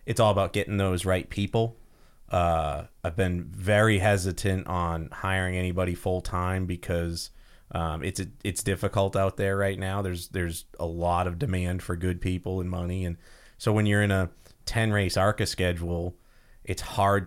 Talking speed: 175 wpm